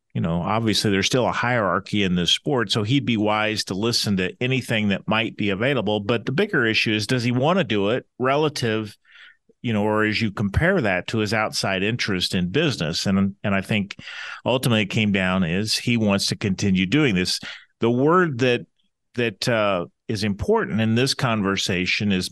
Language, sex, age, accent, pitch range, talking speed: English, male, 40-59, American, 95-120 Hz, 195 wpm